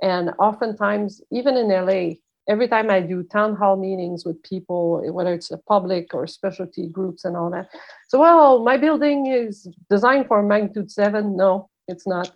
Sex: female